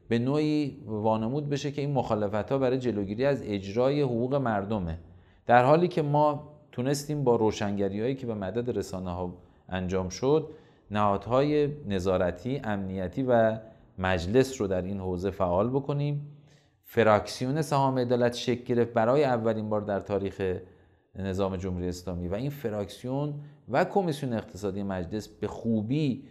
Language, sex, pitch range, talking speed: Persian, male, 100-145 Hz, 140 wpm